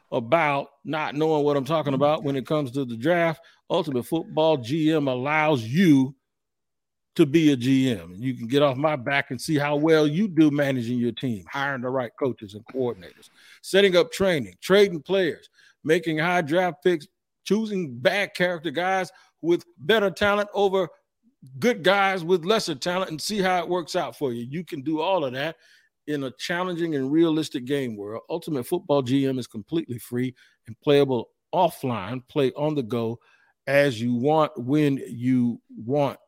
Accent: American